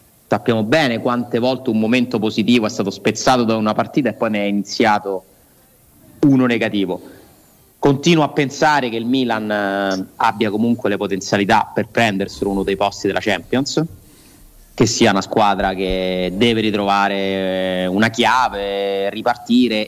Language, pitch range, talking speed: Italian, 100-135 Hz, 145 wpm